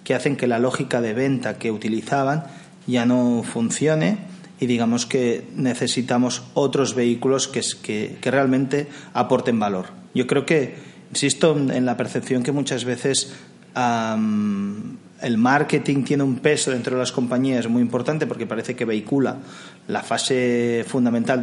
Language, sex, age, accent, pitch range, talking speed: Spanish, male, 30-49, Spanish, 115-135 Hz, 145 wpm